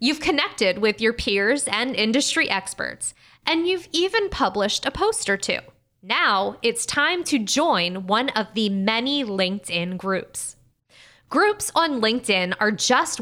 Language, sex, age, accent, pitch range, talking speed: English, female, 20-39, American, 205-290 Hz, 145 wpm